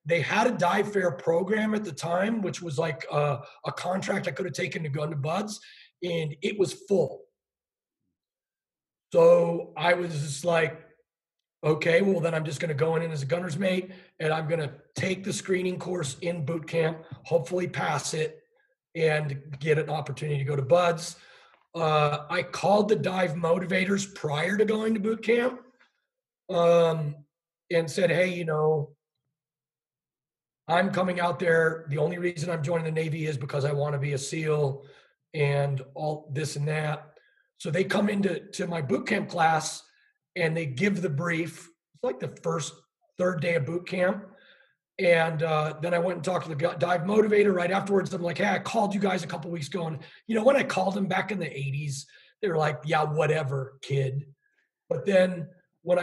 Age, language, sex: 40-59, English, male